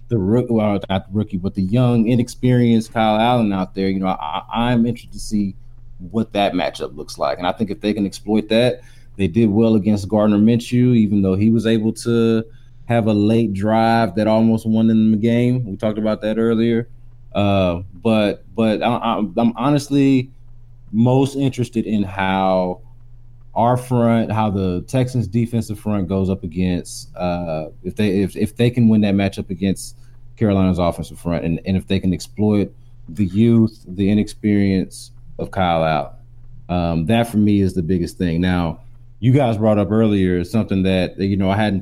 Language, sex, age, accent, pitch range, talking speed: English, male, 20-39, American, 100-120 Hz, 185 wpm